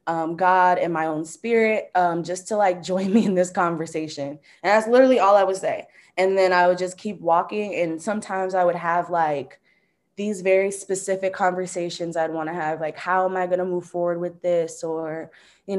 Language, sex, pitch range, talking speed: English, female, 165-190 Hz, 210 wpm